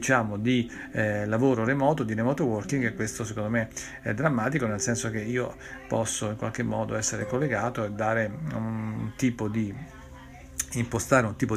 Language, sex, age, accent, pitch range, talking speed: Italian, male, 40-59, native, 105-125 Hz, 165 wpm